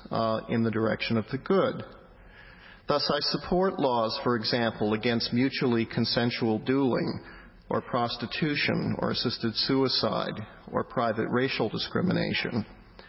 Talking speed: 120 wpm